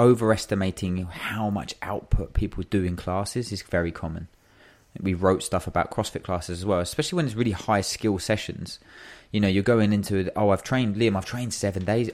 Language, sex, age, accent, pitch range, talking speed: English, male, 20-39, British, 90-110 Hz, 190 wpm